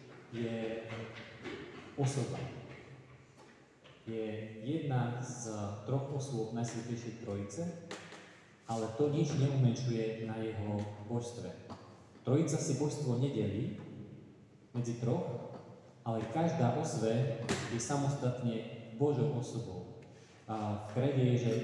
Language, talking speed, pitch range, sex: Slovak, 95 wpm, 110-135 Hz, male